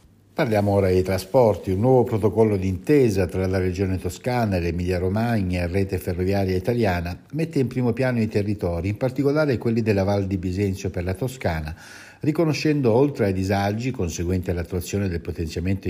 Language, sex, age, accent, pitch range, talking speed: Italian, male, 60-79, native, 90-110 Hz, 160 wpm